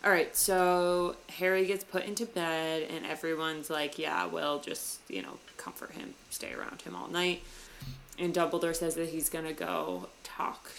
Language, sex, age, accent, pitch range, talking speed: English, female, 20-39, American, 160-185 Hz, 170 wpm